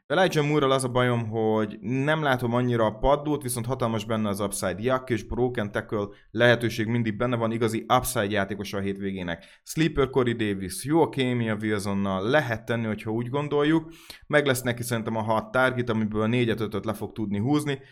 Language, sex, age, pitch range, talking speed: Hungarian, male, 20-39, 105-135 Hz, 185 wpm